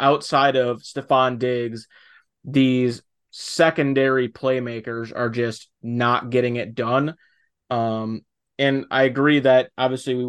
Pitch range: 115-130 Hz